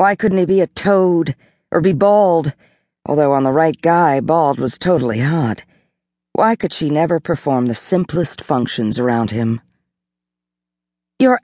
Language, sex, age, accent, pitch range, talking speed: English, female, 50-69, American, 105-165 Hz, 150 wpm